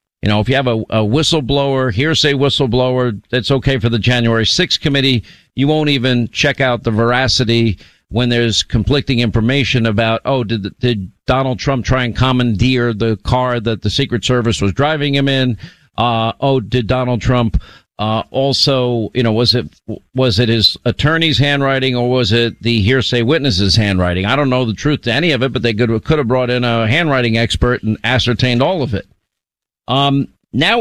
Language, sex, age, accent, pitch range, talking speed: English, male, 50-69, American, 115-145 Hz, 185 wpm